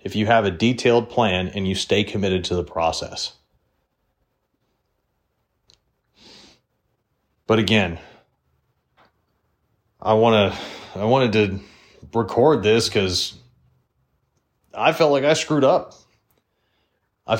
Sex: male